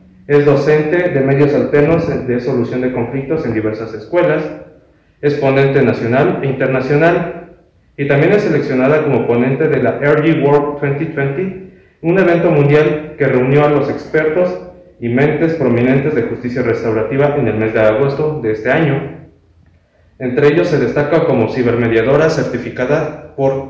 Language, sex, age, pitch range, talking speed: Spanish, male, 30-49, 115-145 Hz, 145 wpm